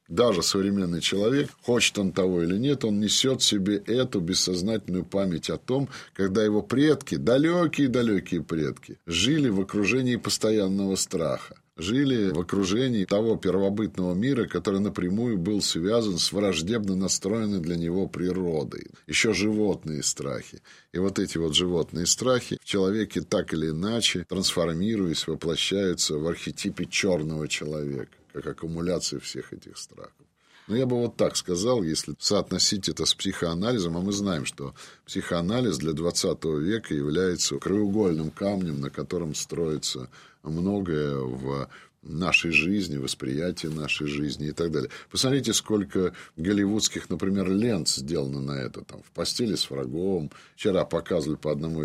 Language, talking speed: Russian, 140 wpm